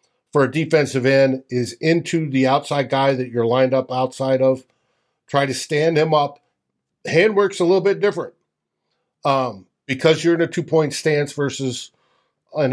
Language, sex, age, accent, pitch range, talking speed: English, male, 50-69, American, 130-170 Hz, 170 wpm